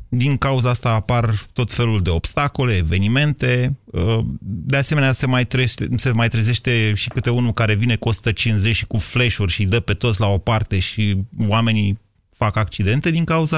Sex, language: male, Romanian